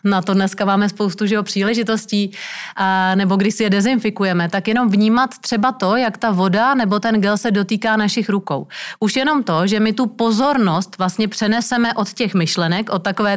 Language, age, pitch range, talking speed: Czech, 30-49, 195-220 Hz, 195 wpm